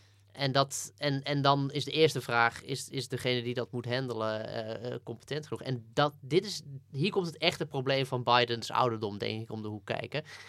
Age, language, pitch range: 20-39, Dutch, 115-135 Hz